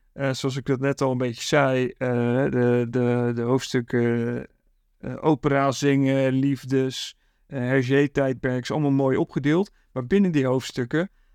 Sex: male